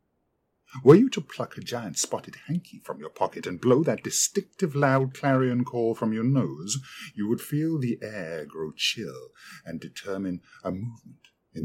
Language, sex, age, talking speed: English, male, 50-69, 170 wpm